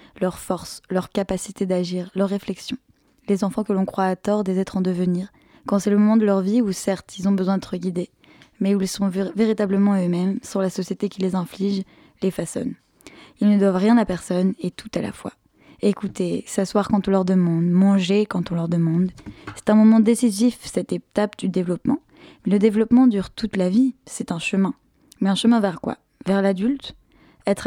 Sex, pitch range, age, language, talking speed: female, 185-215 Hz, 10-29, French, 205 wpm